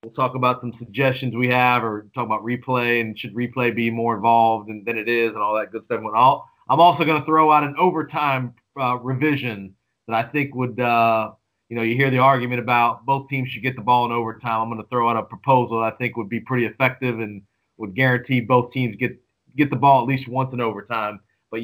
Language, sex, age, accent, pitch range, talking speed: English, male, 40-59, American, 115-140 Hz, 235 wpm